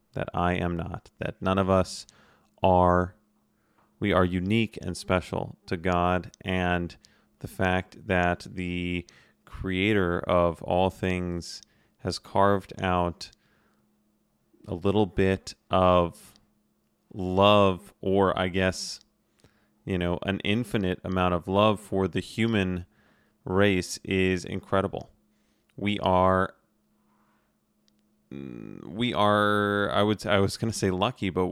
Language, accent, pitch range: English, American, 90-105 Hz